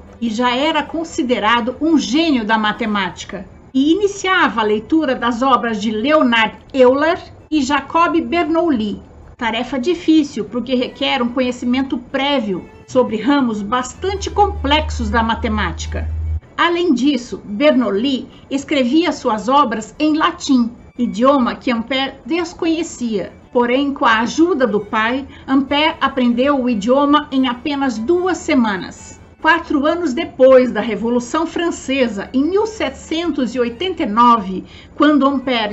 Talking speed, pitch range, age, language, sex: 115 wpm, 240-305 Hz, 60-79, Portuguese, female